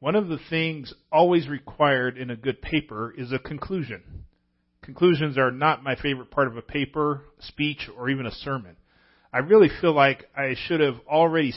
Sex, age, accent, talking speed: male, 40-59, American, 180 wpm